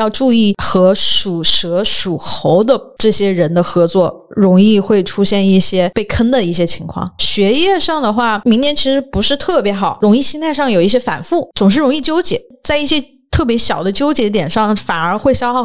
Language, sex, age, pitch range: Chinese, female, 20-39, 185-230 Hz